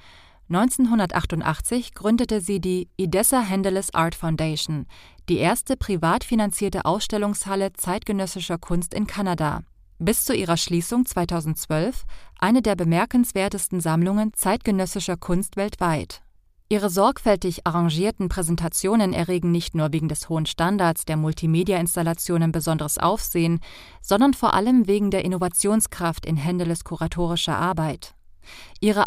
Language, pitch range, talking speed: German, 165-205 Hz, 115 wpm